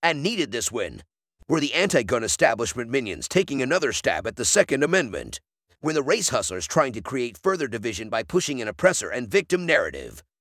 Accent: American